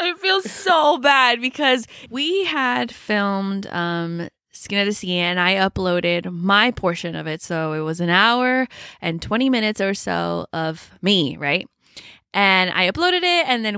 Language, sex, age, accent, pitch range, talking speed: English, female, 20-39, American, 175-235 Hz, 170 wpm